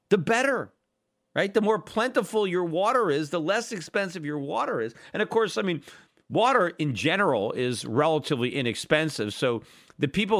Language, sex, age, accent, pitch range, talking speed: English, male, 40-59, American, 150-220 Hz, 165 wpm